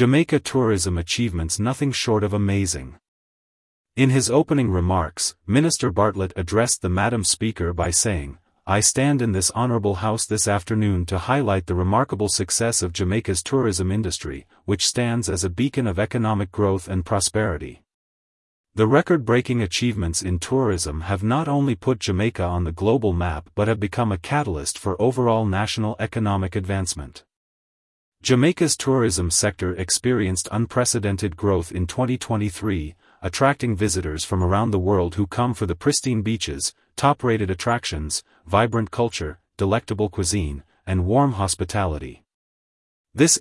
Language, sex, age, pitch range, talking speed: English, male, 40-59, 95-120 Hz, 140 wpm